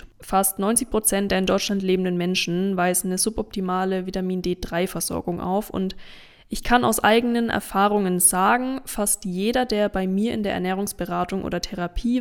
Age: 20-39